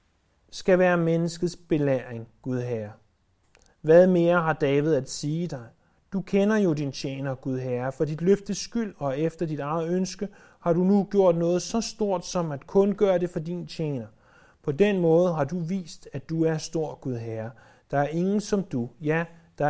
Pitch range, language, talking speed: 135-180 Hz, Danish, 190 wpm